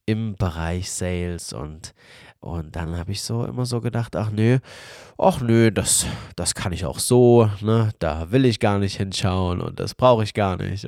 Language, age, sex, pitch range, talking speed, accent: German, 30-49, male, 95-120 Hz, 205 wpm, German